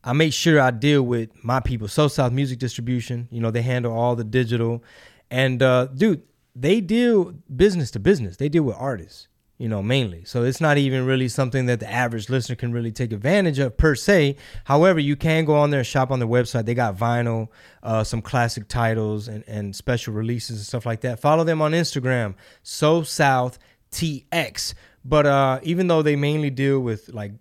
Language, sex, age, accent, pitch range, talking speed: English, male, 20-39, American, 115-145 Hz, 200 wpm